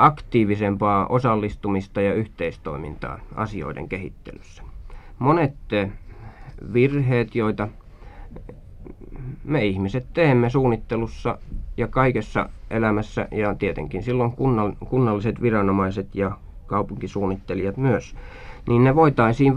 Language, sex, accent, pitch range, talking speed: Finnish, male, native, 95-120 Hz, 85 wpm